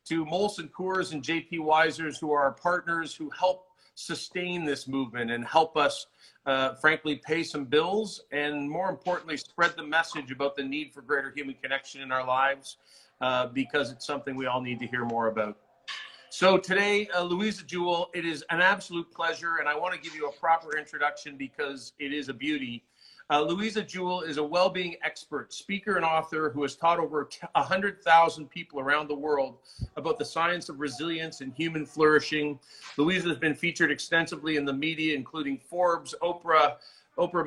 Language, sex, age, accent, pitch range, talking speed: English, male, 50-69, American, 145-170 Hz, 180 wpm